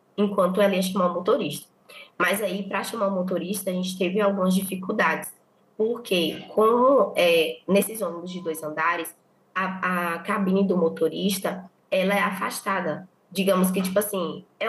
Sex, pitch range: female, 180-210 Hz